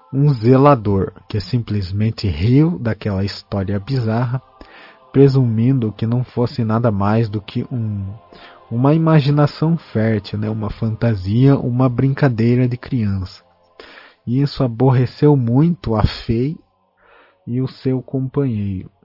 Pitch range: 110-135 Hz